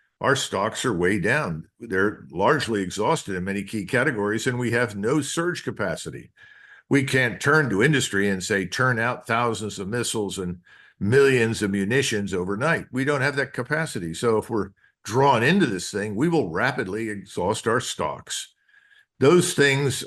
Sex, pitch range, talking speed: male, 105-145 Hz, 165 wpm